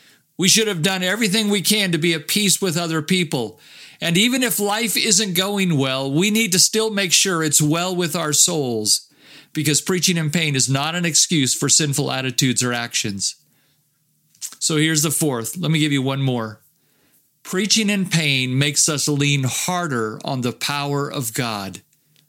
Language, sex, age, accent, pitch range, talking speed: English, male, 50-69, American, 145-185 Hz, 180 wpm